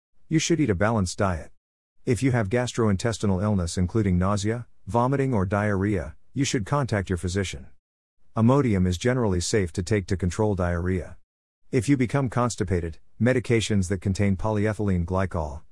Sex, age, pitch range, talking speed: male, 50-69, 90-115 Hz, 150 wpm